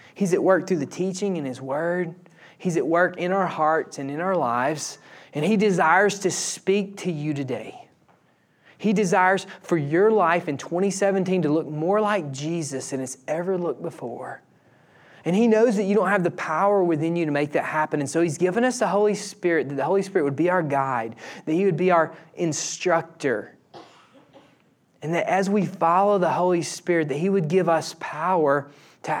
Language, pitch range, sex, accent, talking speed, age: English, 155-200 Hz, male, American, 195 wpm, 20-39